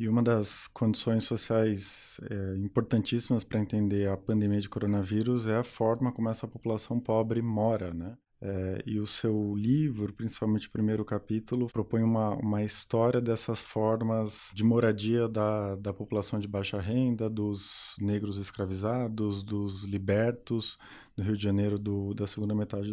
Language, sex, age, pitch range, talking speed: Portuguese, male, 20-39, 105-115 Hz, 150 wpm